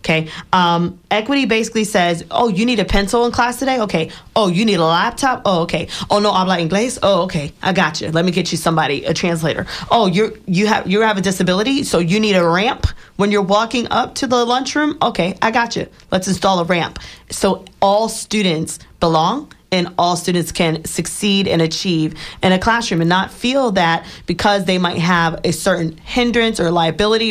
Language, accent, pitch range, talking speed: English, American, 170-210 Hz, 205 wpm